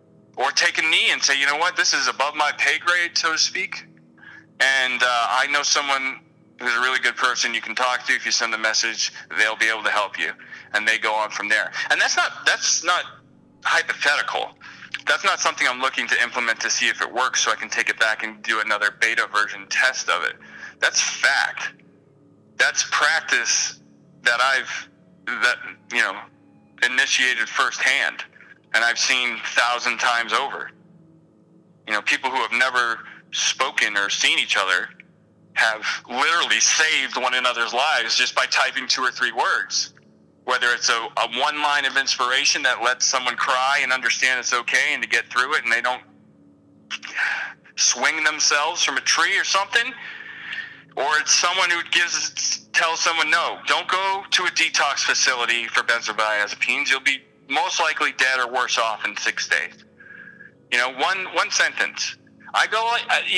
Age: 30-49